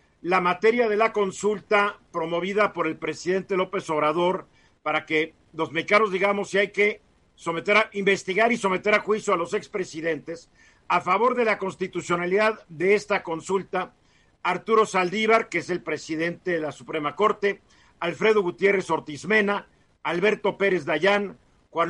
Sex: male